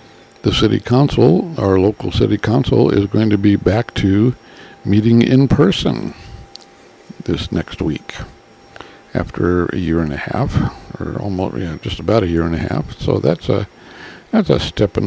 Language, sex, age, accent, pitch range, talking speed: English, male, 60-79, American, 90-105 Hz, 165 wpm